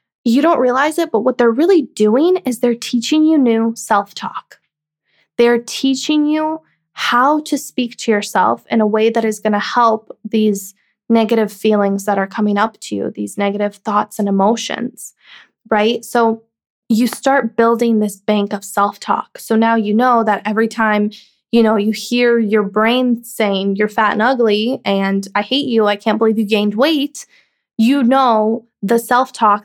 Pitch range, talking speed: 210-240 Hz, 170 wpm